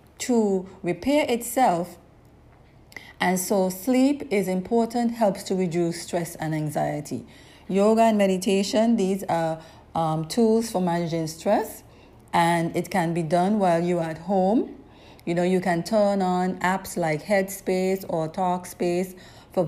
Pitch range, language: 175-220 Hz, English